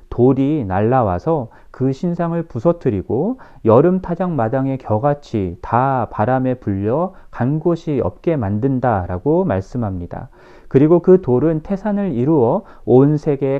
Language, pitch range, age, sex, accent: Korean, 110-175 Hz, 40-59, male, native